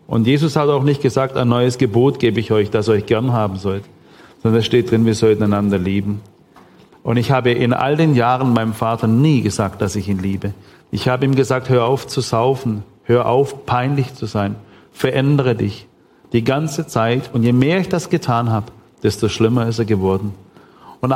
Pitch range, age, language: 110-135 Hz, 40-59, German